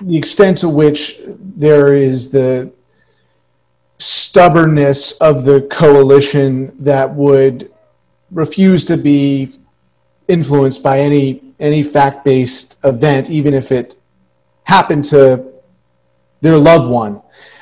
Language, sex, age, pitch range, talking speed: English, male, 40-59, 135-175 Hz, 100 wpm